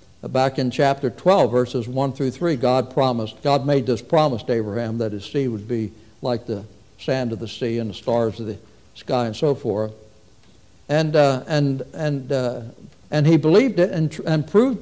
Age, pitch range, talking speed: 60-79, 120-160 Hz, 195 wpm